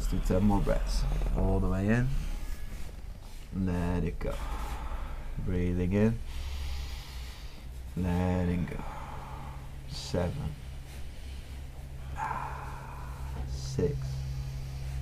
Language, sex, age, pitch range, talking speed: English, male, 30-49, 80-125 Hz, 70 wpm